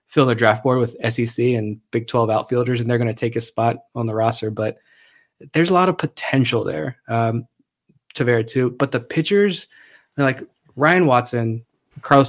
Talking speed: 190 wpm